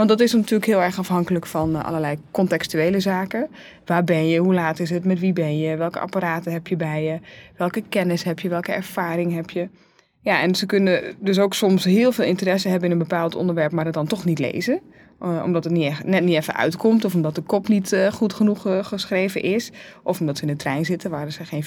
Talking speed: 235 wpm